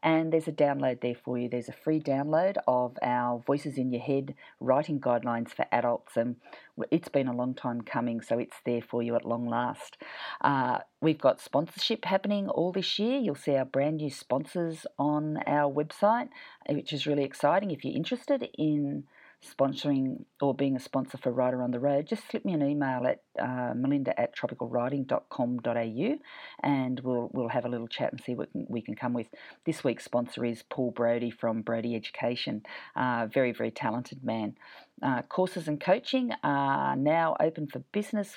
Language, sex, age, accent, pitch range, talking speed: English, female, 40-59, Australian, 125-155 Hz, 190 wpm